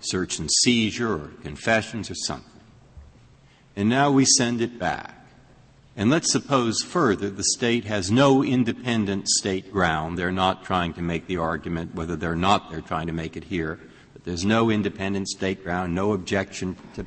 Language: English